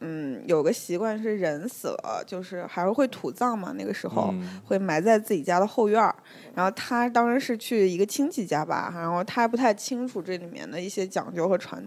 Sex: female